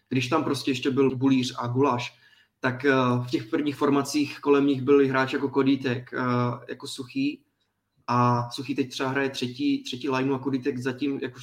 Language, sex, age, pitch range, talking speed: Czech, male, 20-39, 125-140 Hz, 180 wpm